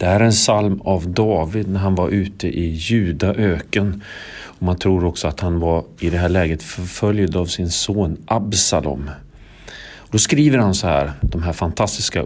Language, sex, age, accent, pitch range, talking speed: Swedish, male, 40-59, native, 80-100 Hz, 185 wpm